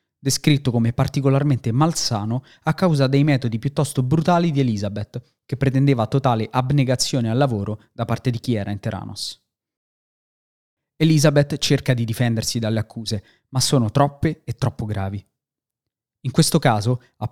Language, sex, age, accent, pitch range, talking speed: Italian, male, 20-39, native, 115-145 Hz, 140 wpm